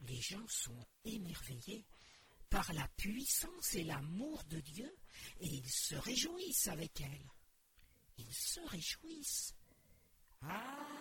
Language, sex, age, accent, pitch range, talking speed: French, female, 50-69, French, 175-295 Hz, 115 wpm